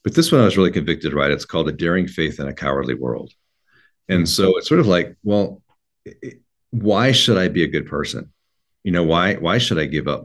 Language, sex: English, male